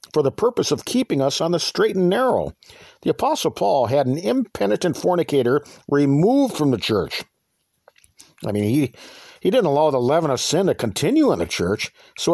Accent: American